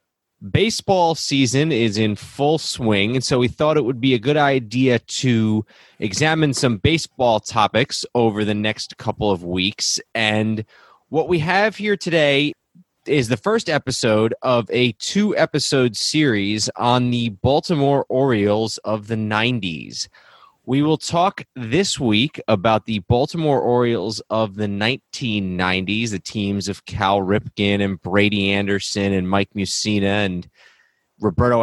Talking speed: 140 wpm